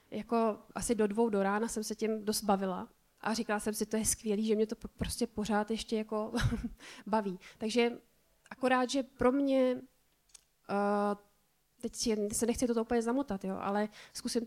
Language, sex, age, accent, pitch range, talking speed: Czech, female, 20-39, native, 205-240 Hz, 170 wpm